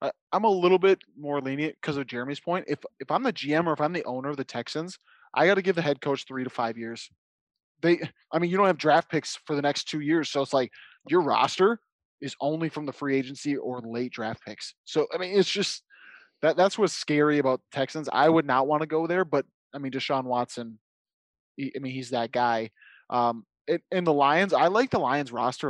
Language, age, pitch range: English, 20-39, 125-160 Hz